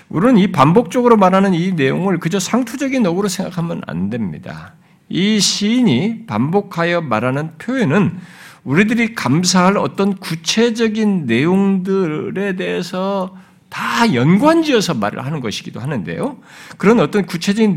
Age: 50-69